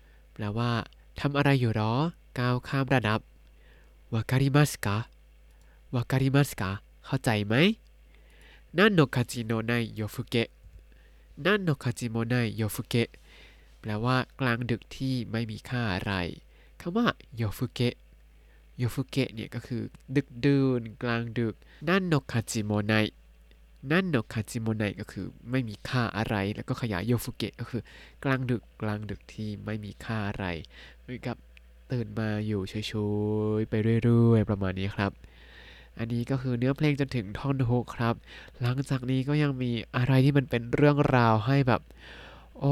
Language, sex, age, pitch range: Thai, male, 20-39, 105-130 Hz